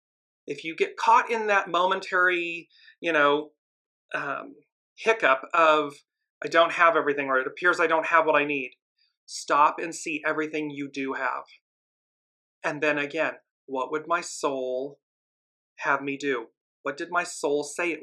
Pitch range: 145-180 Hz